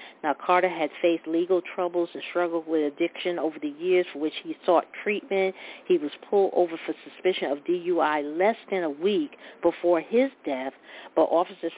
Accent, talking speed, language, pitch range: American, 180 wpm, English, 165-195 Hz